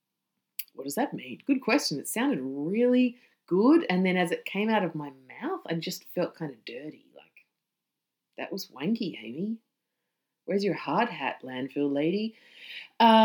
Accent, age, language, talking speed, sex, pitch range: Australian, 30-49, English, 170 wpm, female, 165-255 Hz